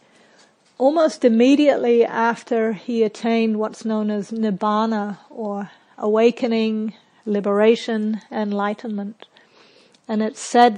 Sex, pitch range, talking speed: female, 215-240 Hz, 90 wpm